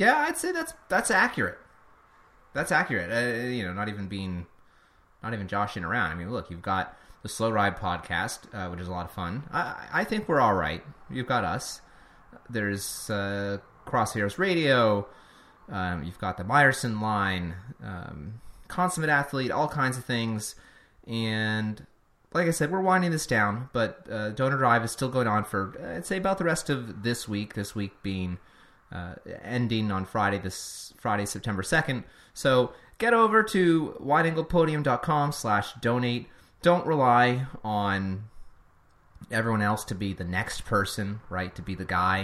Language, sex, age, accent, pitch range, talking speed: English, male, 30-49, American, 95-130 Hz, 170 wpm